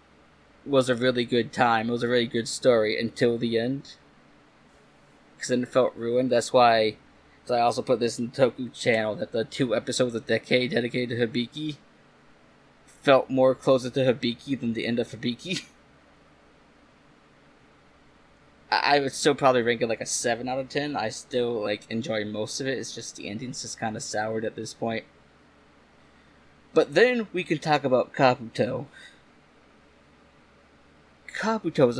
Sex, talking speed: male, 165 wpm